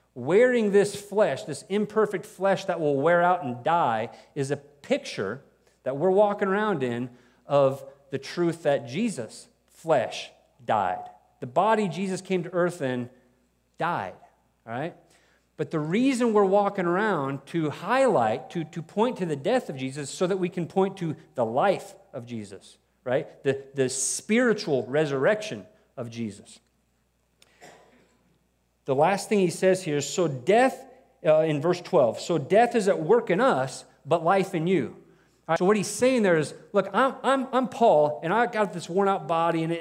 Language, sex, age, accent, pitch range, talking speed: English, male, 40-59, American, 150-205 Hz, 170 wpm